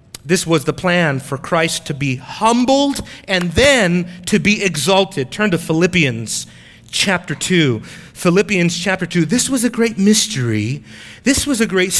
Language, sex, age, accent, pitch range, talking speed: English, male, 30-49, American, 155-235 Hz, 155 wpm